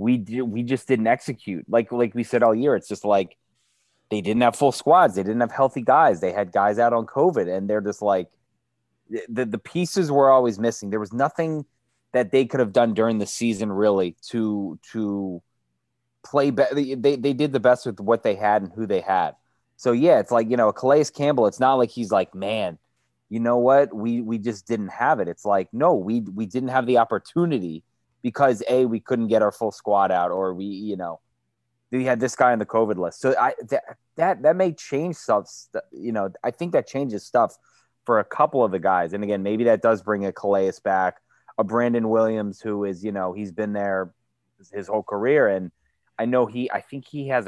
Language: English